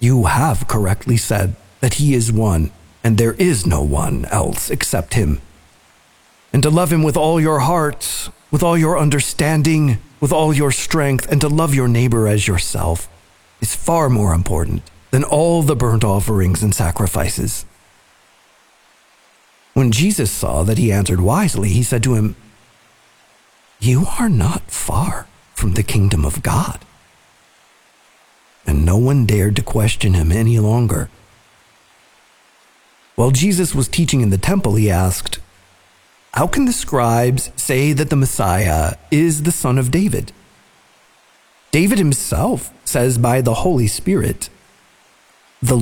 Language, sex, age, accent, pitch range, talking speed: English, male, 50-69, American, 100-150 Hz, 145 wpm